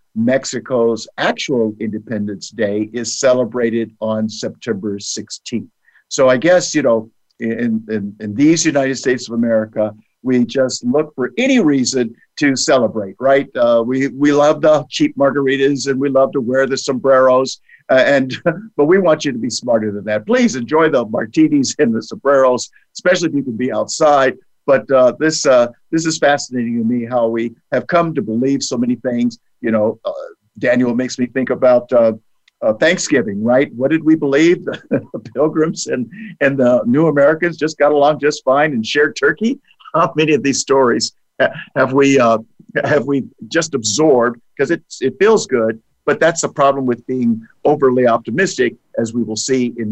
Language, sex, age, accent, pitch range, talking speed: English, male, 50-69, American, 115-145 Hz, 175 wpm